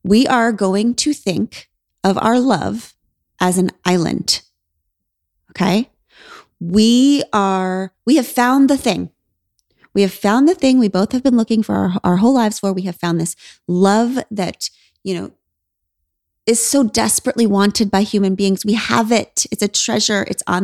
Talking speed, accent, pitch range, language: 170 wpm, American, 165-220 Hz, English